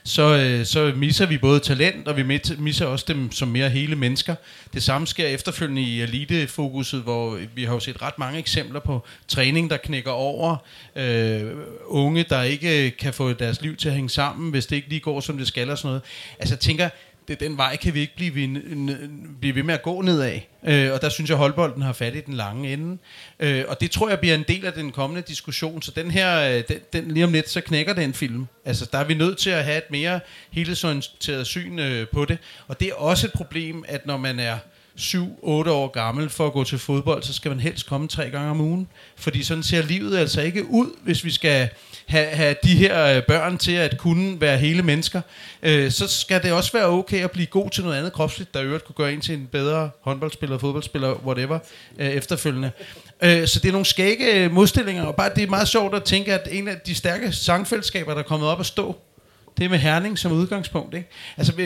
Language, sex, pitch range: Danish, male, 135-170 Hz